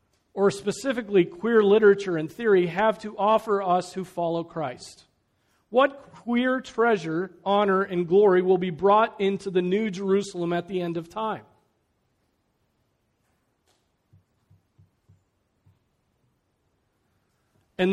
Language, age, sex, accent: English, 40-59, male, American